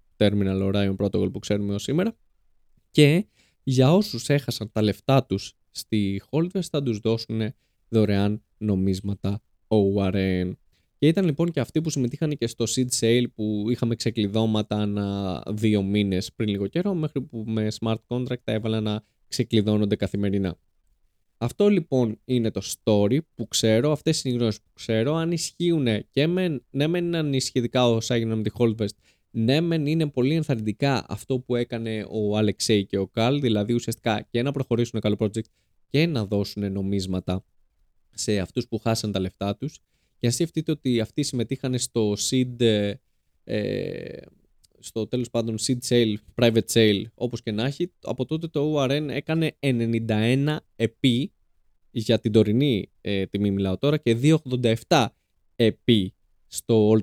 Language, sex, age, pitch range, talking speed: Greek, male, 20-39, 105-130 Hz, 155 wpm